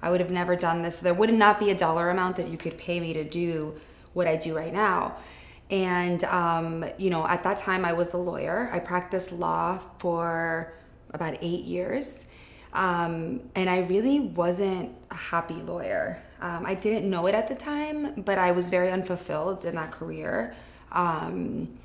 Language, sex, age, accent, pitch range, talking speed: English, female, 20-39, American, 170-195 Hz, 185 wpm